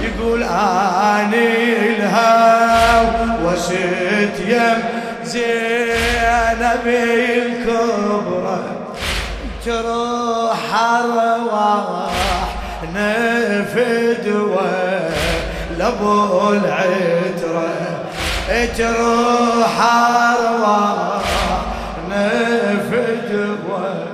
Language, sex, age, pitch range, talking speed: Arabic, male, 20-39, 200-230 Hz, 40 wpm